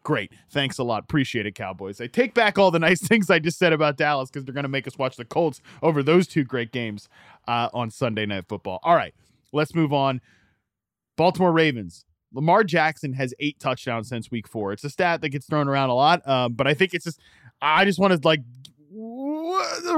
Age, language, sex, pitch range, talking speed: 20-39, English, male, 130-175 Hz, 220 wpm